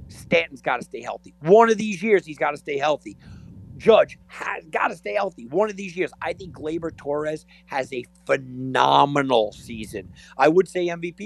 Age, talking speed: 50-69, 190 wpm